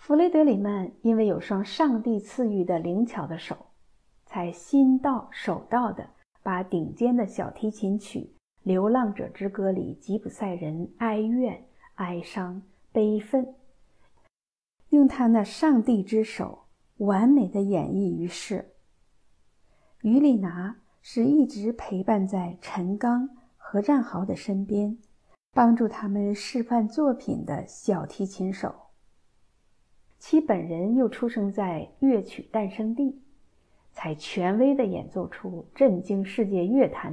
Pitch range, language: 185-245 Hz, Chinese